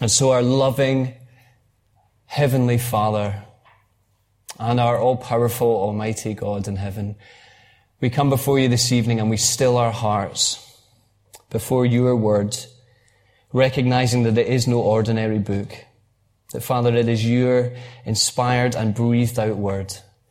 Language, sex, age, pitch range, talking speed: English, male, 30-49, 110-130 Hz, 125 wpm